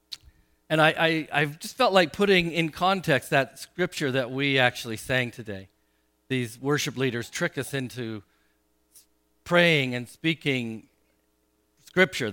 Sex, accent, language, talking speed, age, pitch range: male, American, English, 130 wpm, 50-69, 105-170 Hz